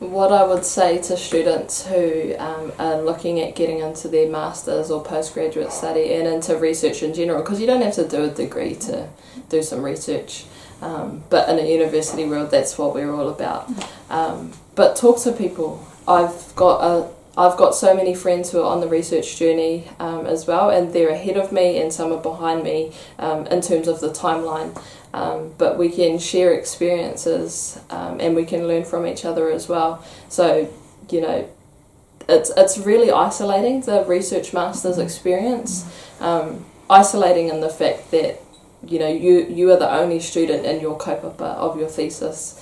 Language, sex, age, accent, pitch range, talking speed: English, female, 10-29, Australian, 160-180 Hz, 185 wpm